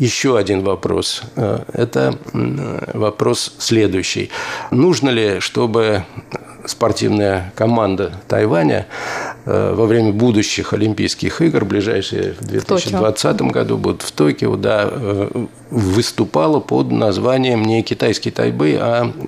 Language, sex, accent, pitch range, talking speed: Russian, male, native, 105-130 Hz, 100 wpm